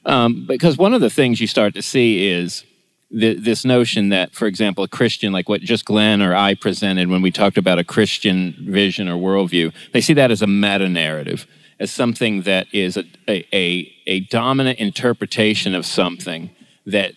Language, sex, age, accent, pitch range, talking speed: English, male, 30-49, American, 90-115 Hz, 190 wpm